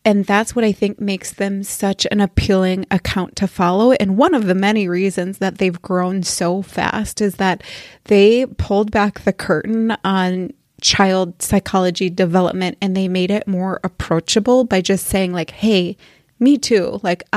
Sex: female